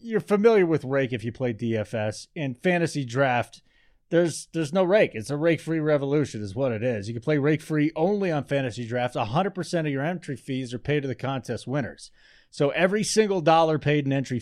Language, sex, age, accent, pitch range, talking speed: English, male, 30-49, American, 130-165 Hz, 220 wpm